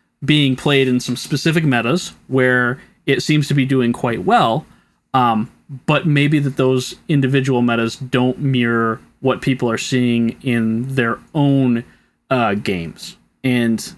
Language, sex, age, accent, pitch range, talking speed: English, male, 20-39, American, 120-145 Hz, 140 wpm